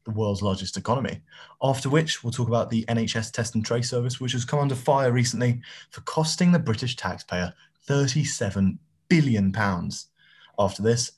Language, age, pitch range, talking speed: English, 20-39, 95-120 Hz, 155 wpm